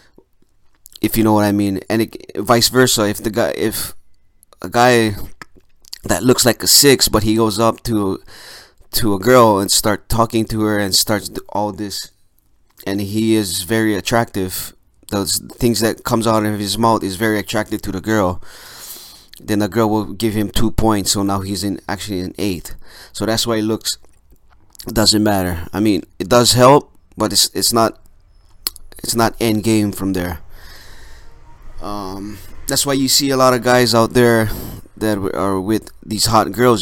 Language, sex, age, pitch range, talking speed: English, male, 20-39, 95-115 Hz, 180 wpm